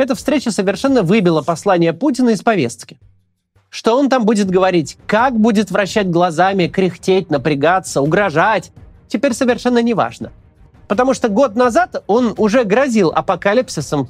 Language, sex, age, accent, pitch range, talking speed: Russian, male, 30-49, native, 160-240 Hz, 135 wpm